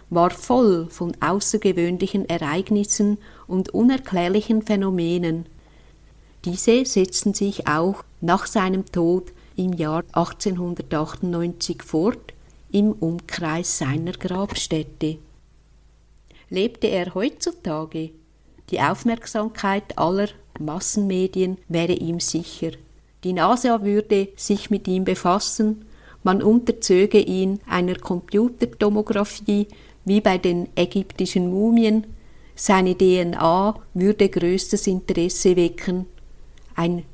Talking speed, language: 90 wpm, German